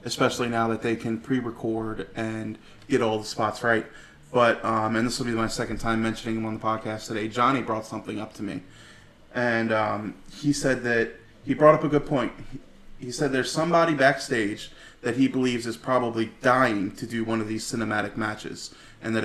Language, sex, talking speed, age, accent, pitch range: English, male, 200 wpm, 20-39, American, 115-135 Hz